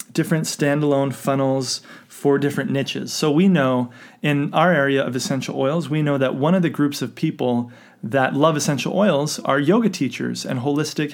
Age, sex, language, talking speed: 30-49, male, English, 180 wpm